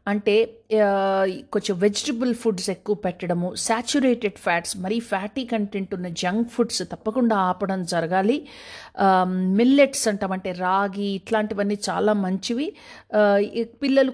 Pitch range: 190-240 Hz